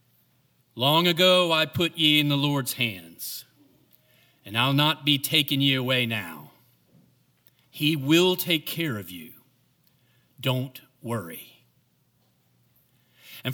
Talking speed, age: 115 wpm, 40-59